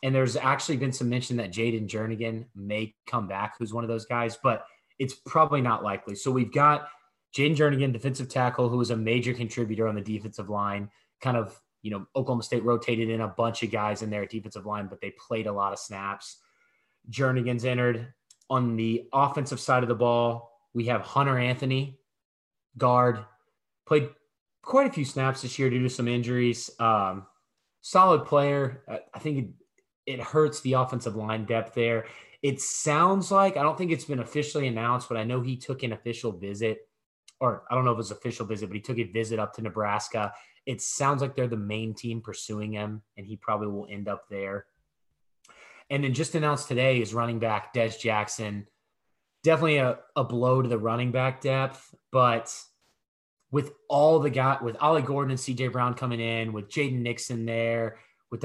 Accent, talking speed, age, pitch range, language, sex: American, 190 wpm, 20-39, 110-135 Hz, English, male